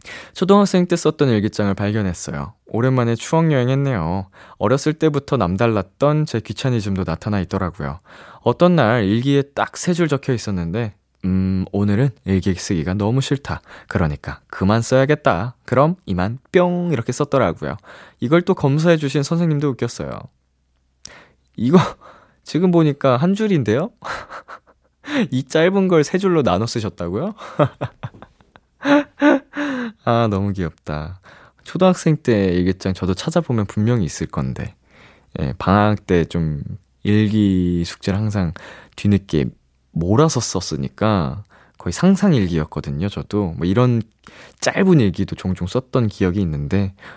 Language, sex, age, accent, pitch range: Korean, male, 20-39, native, 95-140 Hz